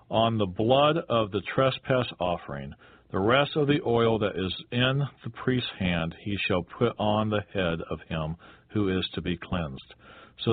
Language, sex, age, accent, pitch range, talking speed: English, male, 50-69, American, 90-130 Hz, 180 wpm